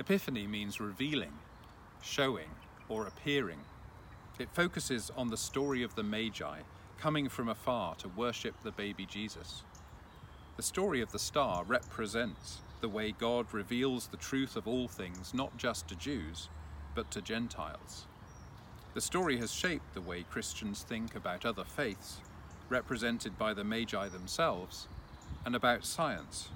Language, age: English, 40-59